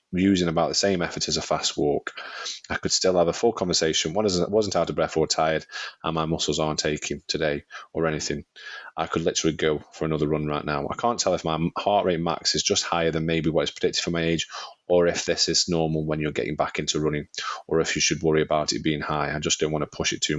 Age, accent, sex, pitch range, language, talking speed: 30-49, British, male, 80-100 Hz, English, 255 wpm